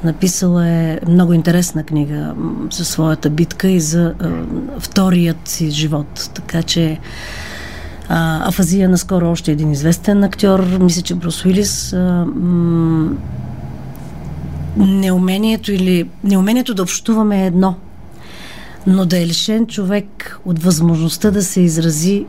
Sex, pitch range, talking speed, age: female, 165-190 Hz, 115 wpm, 40-59